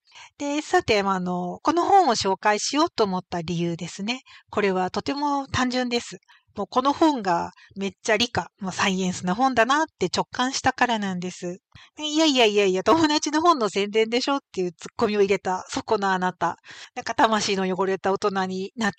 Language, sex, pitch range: Japanese, female, 185-265 Hz